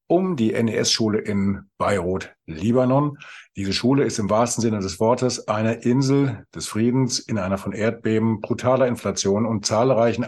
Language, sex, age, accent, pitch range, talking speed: German, male, 50-69, German, 105-125 Hz, 150 wpm